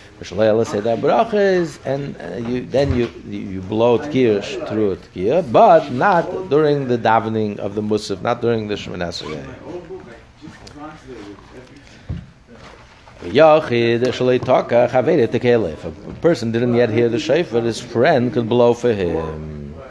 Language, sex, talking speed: English, male, 150 wpm